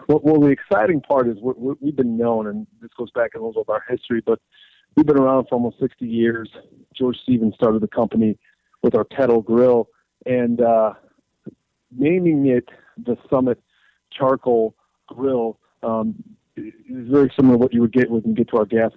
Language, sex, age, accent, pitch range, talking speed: English, male, 40-59, American, 115-130 Hz, 195 wpm